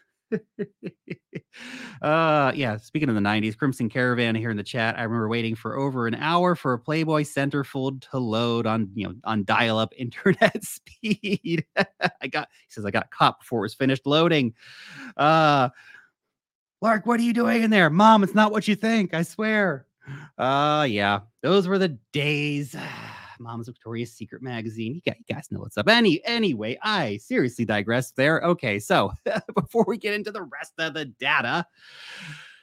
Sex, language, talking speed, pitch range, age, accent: male, English, 175 wpm, 115-160 Hz, 30-49, American